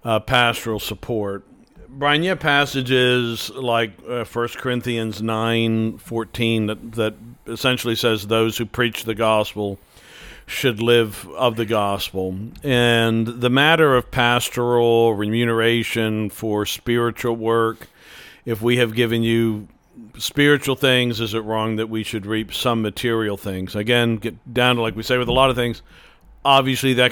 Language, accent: English, American